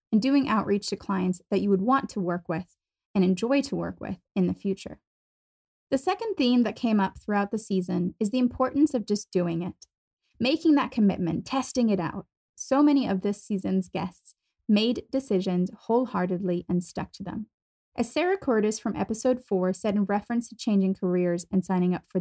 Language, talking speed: English, 190 wpm